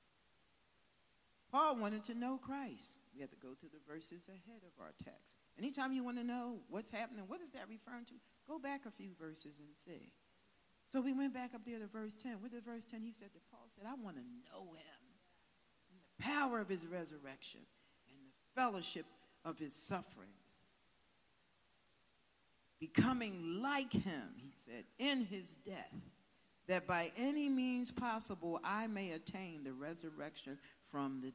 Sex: female